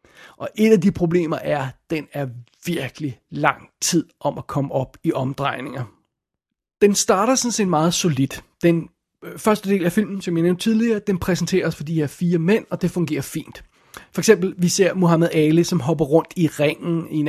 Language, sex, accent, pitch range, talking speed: Danish, male, native, 150-180 Hz, 200 wpm